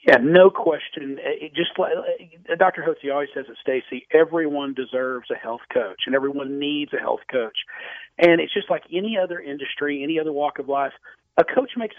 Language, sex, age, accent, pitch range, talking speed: English, male, 40-59, American, 155-210 Hz, 195 wpm